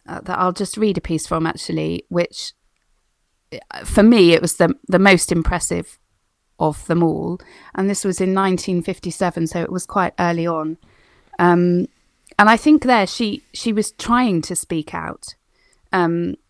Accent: British